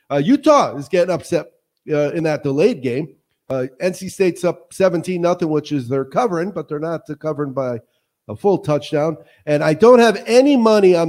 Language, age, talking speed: English, 50-69, 190 wpm